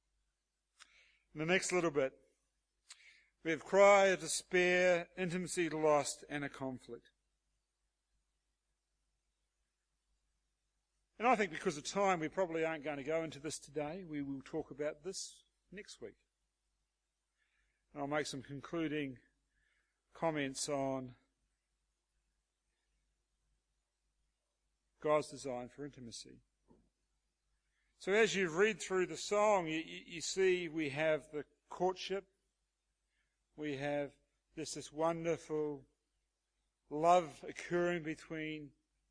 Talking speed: 105 wpm